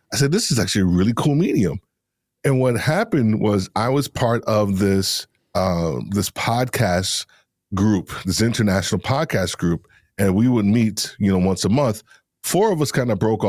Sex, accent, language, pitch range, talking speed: male, American, English, 95-115 Hz, 180 wpm